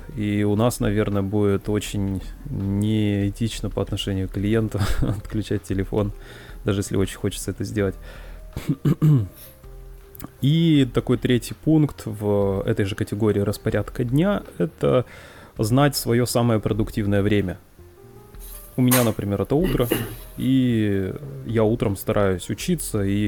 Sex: male